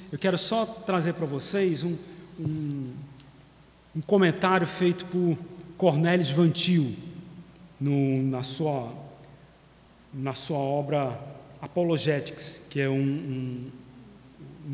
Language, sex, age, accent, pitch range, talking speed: Portuguese, male, 40-59, Brazilian, 155-215 Hz, 95 wpm